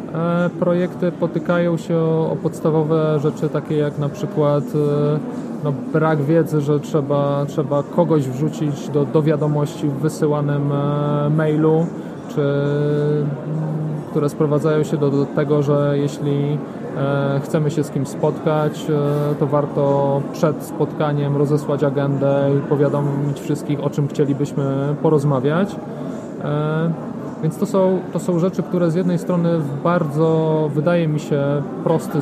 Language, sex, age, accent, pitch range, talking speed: Polish, male, 20-39, native, 145-170 Hz, 130 wpm